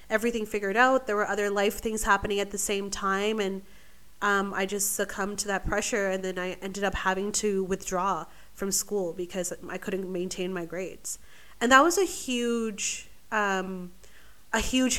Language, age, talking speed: English, 20-39, 180 wpm